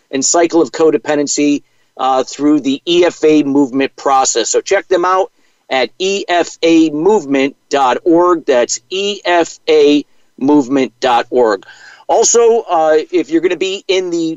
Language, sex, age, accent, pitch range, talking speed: English, male, 50-69, American, 135-180 Hz, 115 wpm